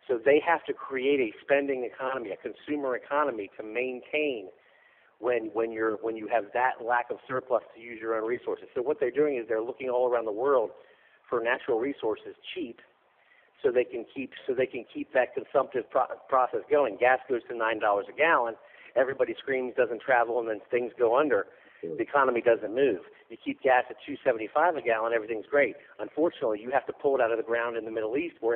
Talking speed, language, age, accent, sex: 210 wpm, English, 50-69, American, male